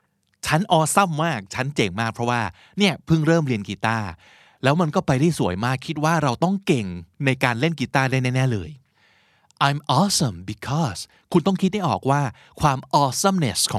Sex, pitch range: male, 110-160 Hz